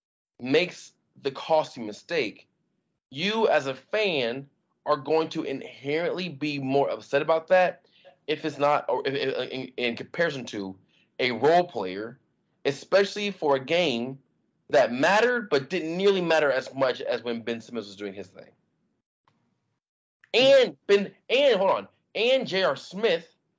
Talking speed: 140 wpm